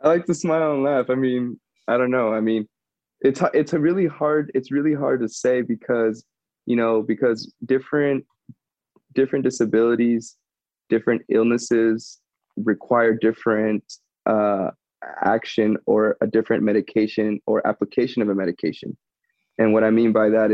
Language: English